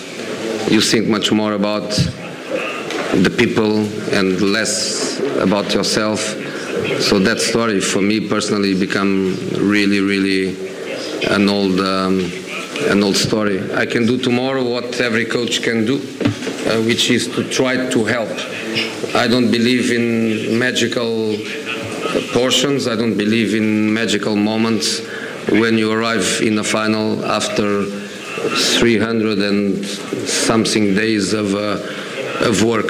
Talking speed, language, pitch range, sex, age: 125 wpm, Italian, 100-115 Hz, male, 50-69